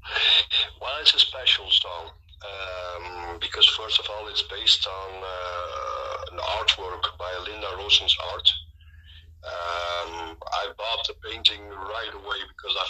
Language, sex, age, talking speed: English, male, 50-69, 135 wpm